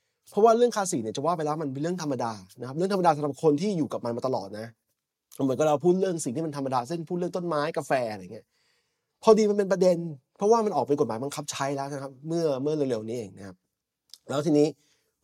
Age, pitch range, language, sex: 20-39, 120-160 Hz, English, male